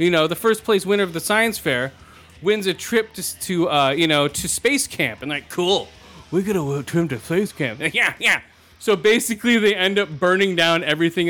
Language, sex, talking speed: English, male, 220 wpm